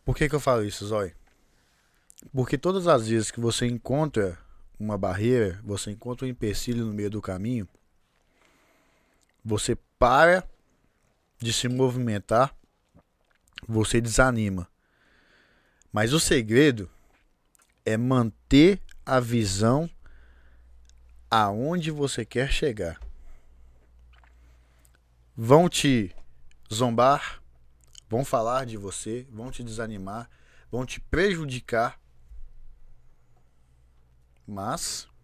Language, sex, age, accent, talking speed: Portuguese, male, 20-39, Brazilian, 95 wpm